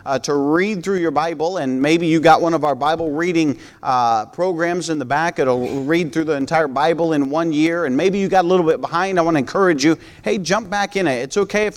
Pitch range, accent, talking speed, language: 140-185 Hz, American, 255 wpm, English